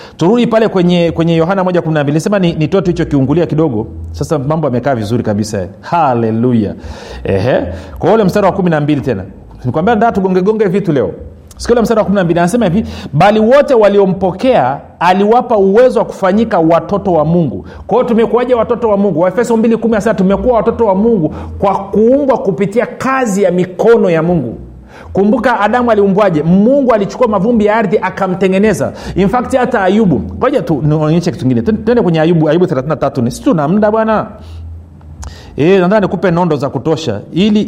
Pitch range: 140-210 Hz